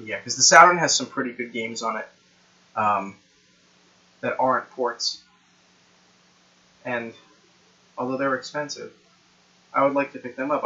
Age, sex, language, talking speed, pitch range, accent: 20-39, male, English, 145 wpm, 110-140 Hz, American